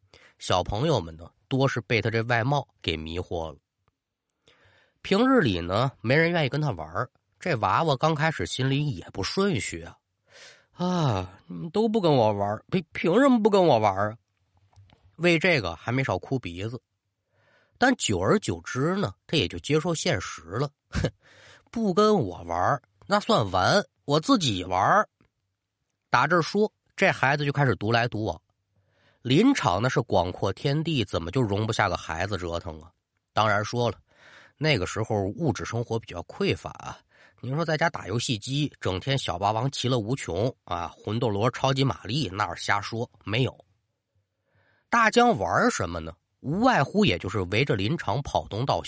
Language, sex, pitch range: Chinese, male, 100-150 Hz